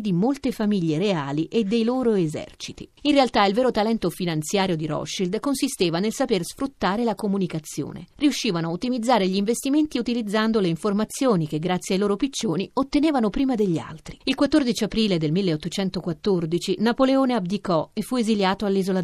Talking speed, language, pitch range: 160 wpm, Italian, 170-225 Hz